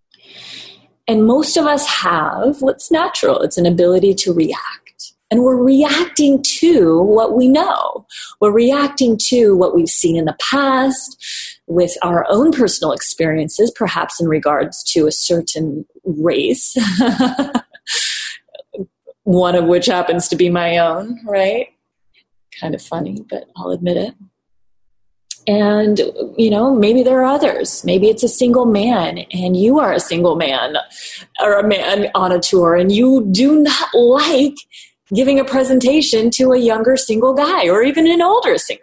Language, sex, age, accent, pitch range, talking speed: English, female, 30-49, American, 180-270 Hz, 150 wpm